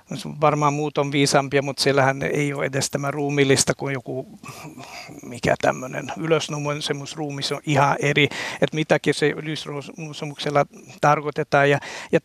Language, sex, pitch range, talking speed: Finnish, male, 140-160 Hz, 130 wpm